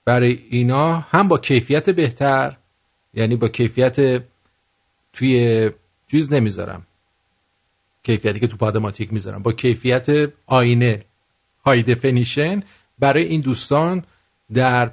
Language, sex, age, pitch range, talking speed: English, male, 50-69, 100-150 Hz, 105 wpm